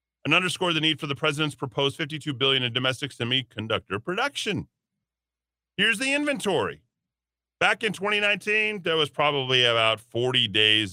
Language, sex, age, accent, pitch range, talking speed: English, male, 40-59, American, 100-150 Hz, 145 wpm